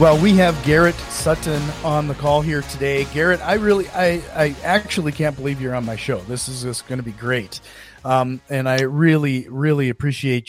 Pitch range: 135-170 Hz